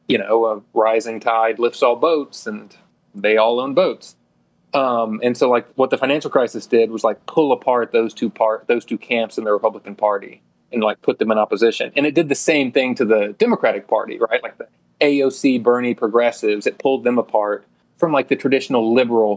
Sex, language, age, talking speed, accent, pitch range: male, English, 30-49, 205 wpm, American, 105-135 Hz